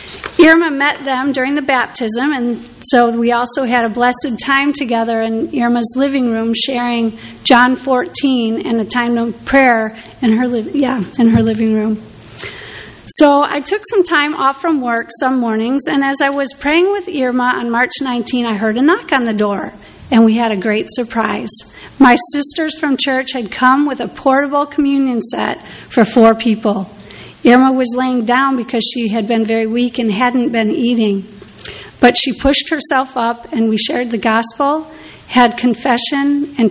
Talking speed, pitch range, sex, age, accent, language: 180 wpm, 230-275 Hz, female, 40-59, American, English